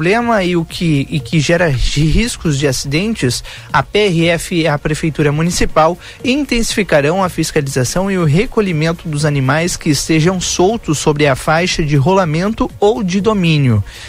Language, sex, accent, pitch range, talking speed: Portuguese, male, Brazilian, 145-180 Hz, 145 wpm